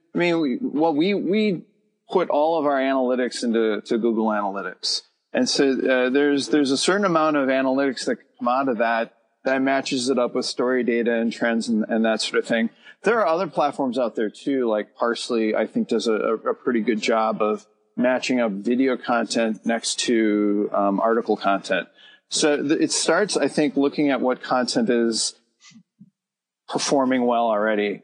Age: 40-59